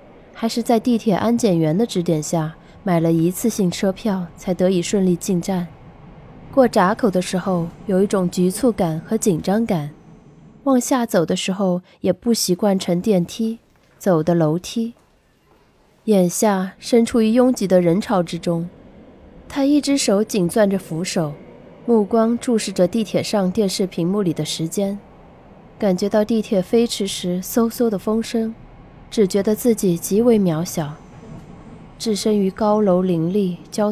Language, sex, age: Chinese, female, 20-39